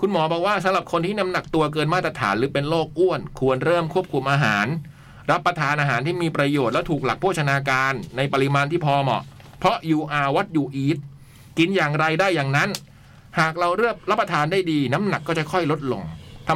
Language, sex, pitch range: Thai, male, 130-175 Hz